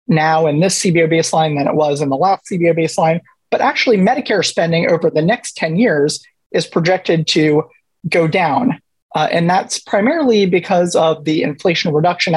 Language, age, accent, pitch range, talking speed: English, 30-49, American, 155-195 Hz, 175 wpm